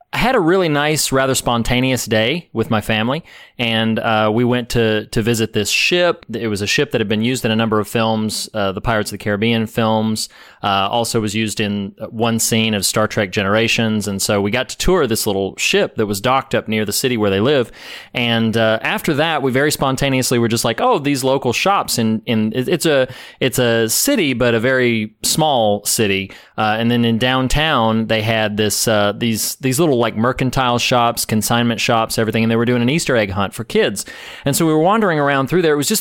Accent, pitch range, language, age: American, 110-130 Hz, English, 30-49